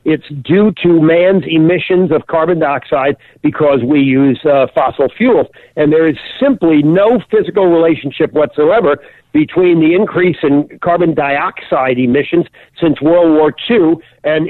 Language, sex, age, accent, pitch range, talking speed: English, male, 50-69, American, 145-175 Hz, 140 wpm